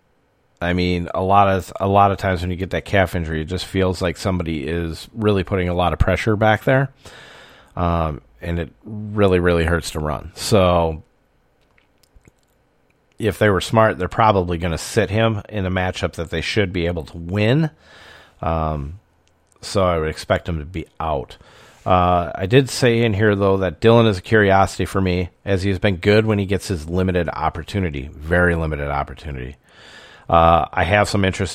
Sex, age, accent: male, 40-59, American